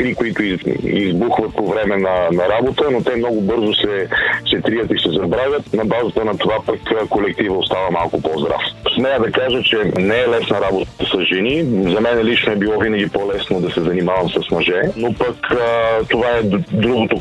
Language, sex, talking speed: Bulgarian, male, 190 wpm